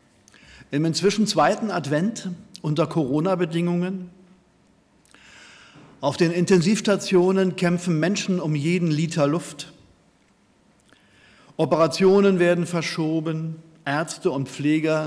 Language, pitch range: German, 150-190 Hz